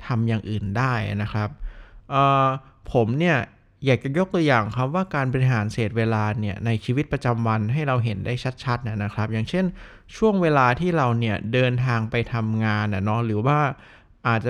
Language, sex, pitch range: Thai, male, 110-145 Hz